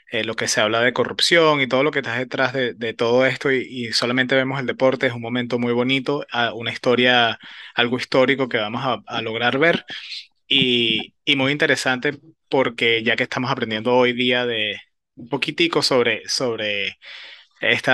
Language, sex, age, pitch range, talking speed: Spanish, male, 20-39, 115-135 Hz, 185 wpm